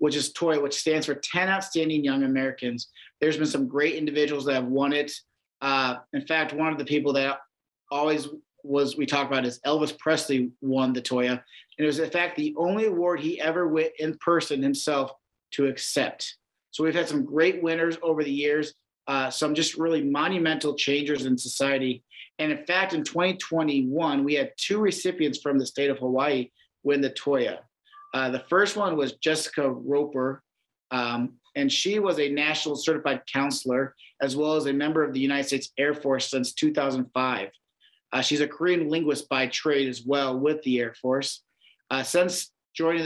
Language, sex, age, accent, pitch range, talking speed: English, male, 40-59, American, 135-155 Hz, 185 wpm